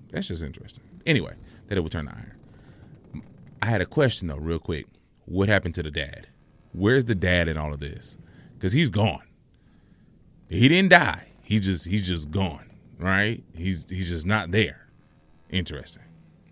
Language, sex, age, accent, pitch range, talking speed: English, male, 30-49, American, 85-125 Hz, 170 wpm